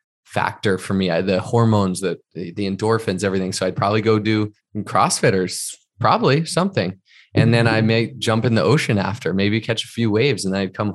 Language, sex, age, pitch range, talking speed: English, male, 20-39, 100-110 Hz, 195 wpm